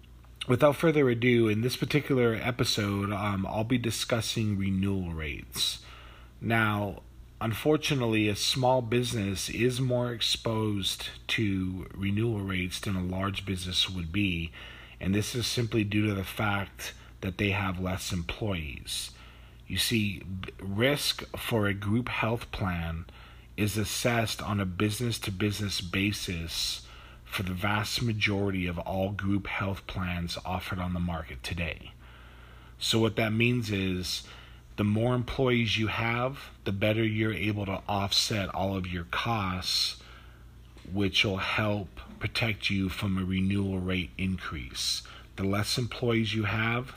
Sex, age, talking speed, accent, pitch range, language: male, 40-59, 140 wpm, American, 90-110 Hz, English